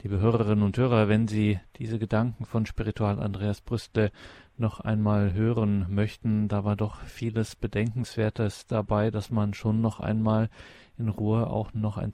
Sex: male